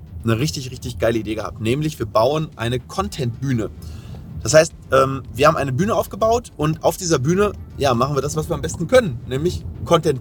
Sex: male